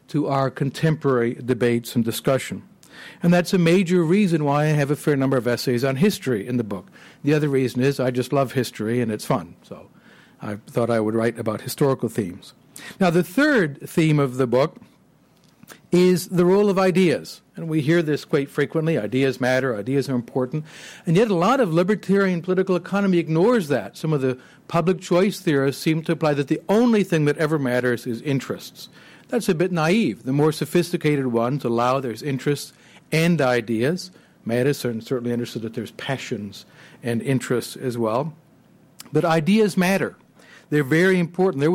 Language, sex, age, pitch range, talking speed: English, male, 60-79, 130-175 Hz, 180 wpm